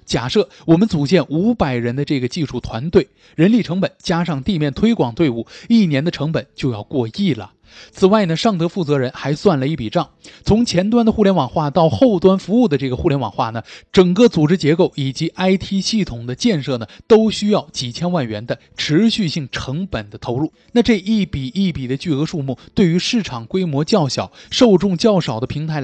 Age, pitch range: 20-39, 135-205 Hz